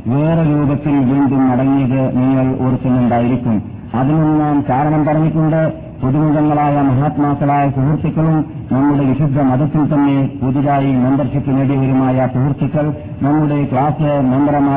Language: Malayalam